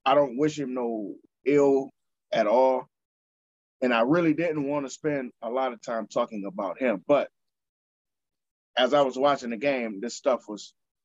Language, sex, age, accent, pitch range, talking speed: English, male, 20-39, American, 105-140 Hz, 175 wpm